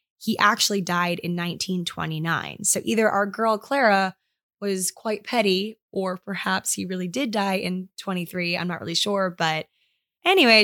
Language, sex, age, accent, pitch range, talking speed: English, female, 10-29, American, 180-220 Hz, 150 wpm